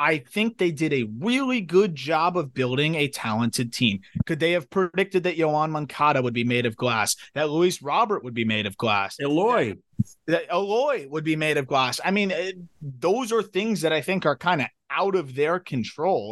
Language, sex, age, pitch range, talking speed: English, male, 30-49, 135-190 Hz, 210 wpm